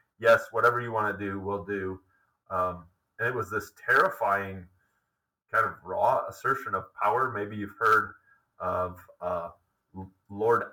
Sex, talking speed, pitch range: male, 145 wpm, 95-120 Hz